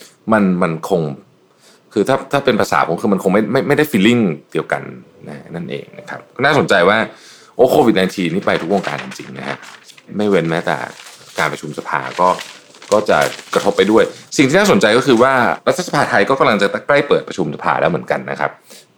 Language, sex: Thai, male